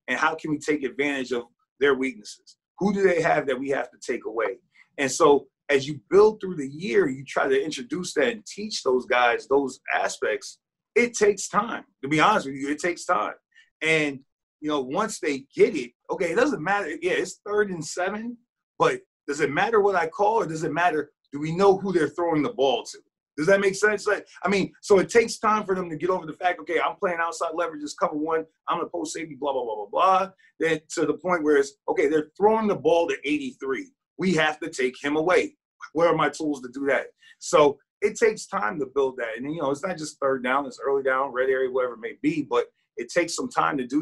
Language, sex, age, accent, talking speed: English, male, 30-49, American, 240 wpm